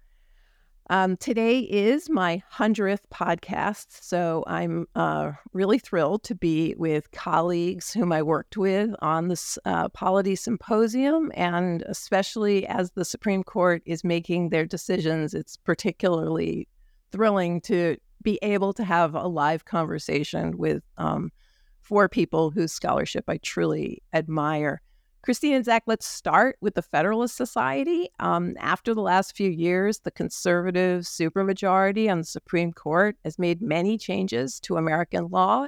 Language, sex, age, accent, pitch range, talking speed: English, female, 50-69, American, 170-215 Hz, 140 wpm